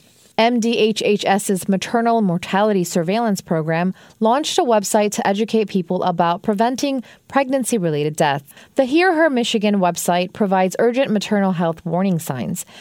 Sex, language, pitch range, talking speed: female, English, 180-225 Hz, 120 wpm